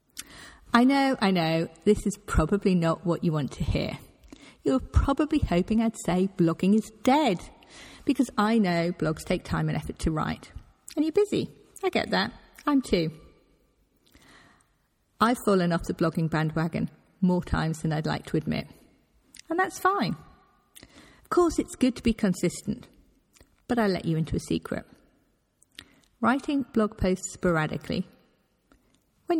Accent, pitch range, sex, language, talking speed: British, 165-240 Hz, female, English, 150 wpm